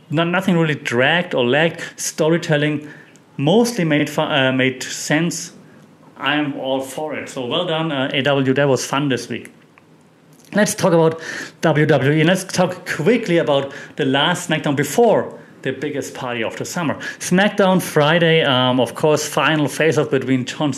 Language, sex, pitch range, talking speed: English, male, 125-150 Hz, 160 wpm